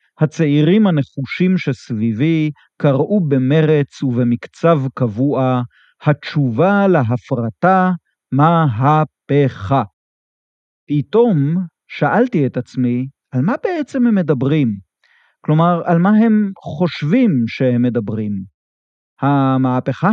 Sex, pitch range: male, 125-165 Hz